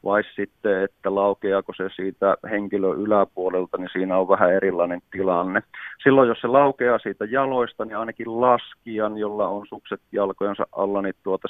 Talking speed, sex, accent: 155 wpm, male, native